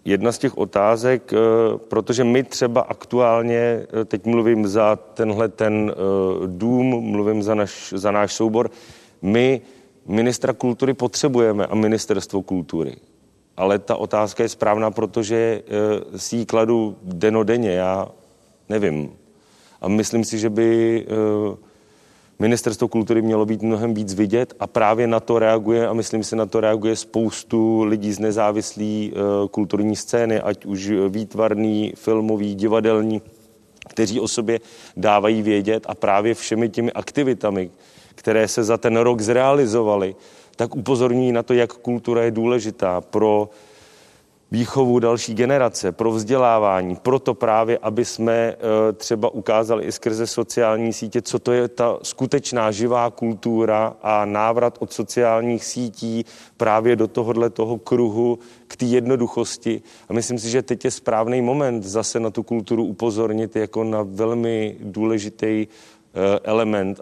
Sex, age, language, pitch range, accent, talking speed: male, 40-59, Czech, 105-120 Hz, native, 135 wpm